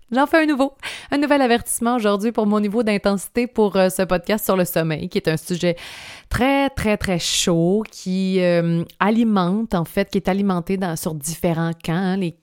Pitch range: 170-205 Hz